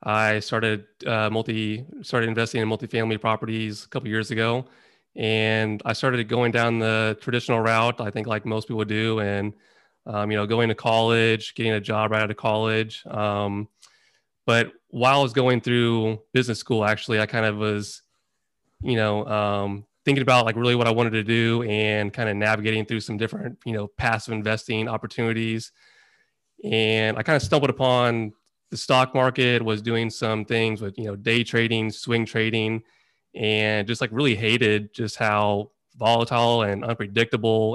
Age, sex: 30-49, male